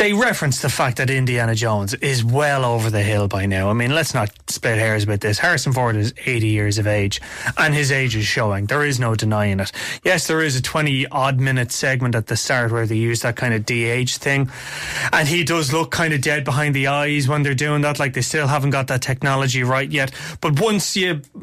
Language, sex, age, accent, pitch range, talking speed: English, male, 20-39, Irish, 120-150 Hz, 230 wpm